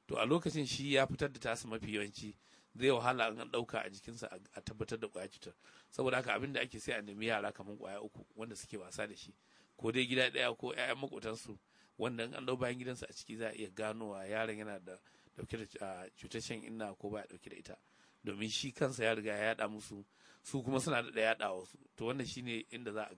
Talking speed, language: 210 wpm, English